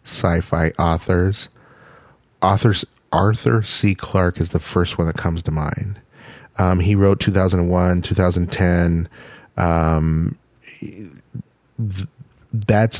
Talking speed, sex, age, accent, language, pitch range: 95 wpm, male, 30-49, American, English, 90-115 Hz